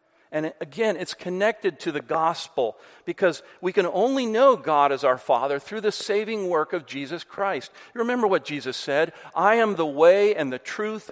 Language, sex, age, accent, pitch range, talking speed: English, male, 50-69, American, 125-195 Hz, 190 wpm